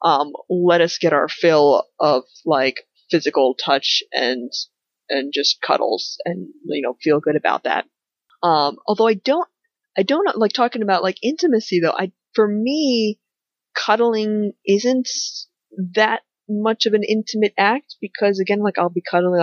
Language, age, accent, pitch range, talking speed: English, 20-39, American, 155-220 Hz, 155 wpm